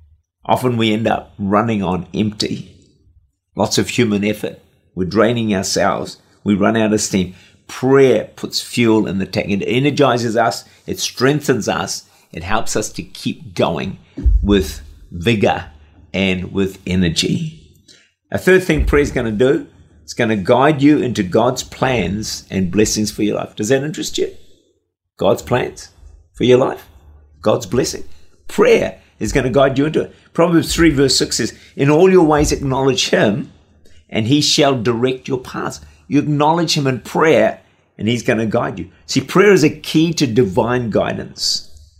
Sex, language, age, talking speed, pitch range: male, English, 50-69, 170 wpm, 90-135 Hz